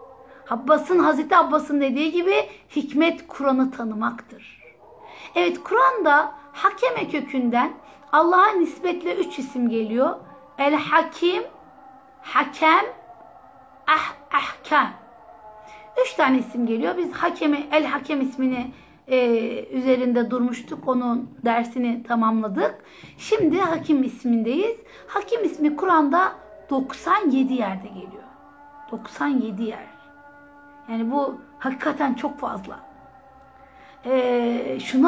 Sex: female